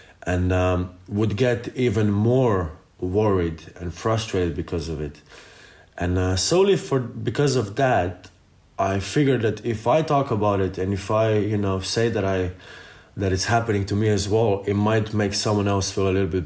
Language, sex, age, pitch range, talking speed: English, male, 20-39, 95-115 Hz, 185 wpm